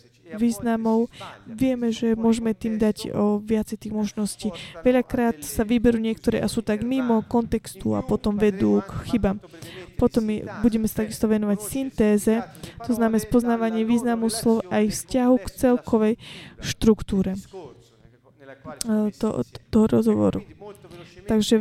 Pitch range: 190-230 Hz